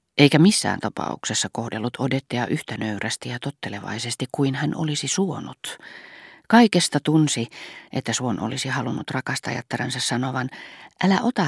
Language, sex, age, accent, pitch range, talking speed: Finnish, female, 40-59, native, 120-160 Hz, 120 wpm